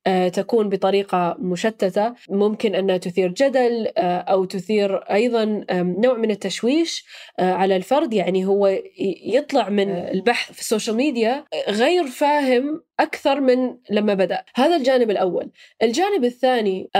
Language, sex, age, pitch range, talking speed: Arabic, female, 10-29, 195-250 Hz, 120 wpm